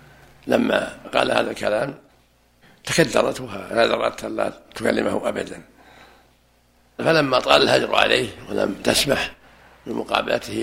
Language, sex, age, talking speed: Arabic, male, 60-79, 95 wpm